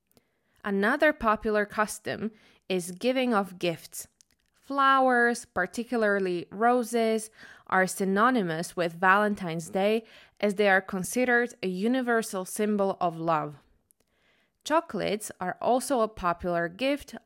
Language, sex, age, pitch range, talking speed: Slovak, female, 20-39, 185-235 Hz, 105 wpm